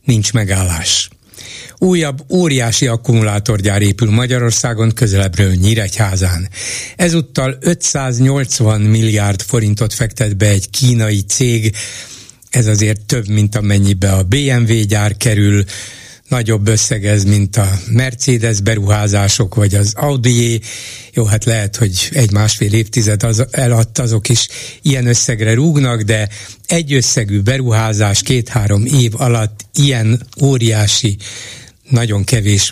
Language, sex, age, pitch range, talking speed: Hungarian, male, 60-79, 105-125 Hz, 115 wpm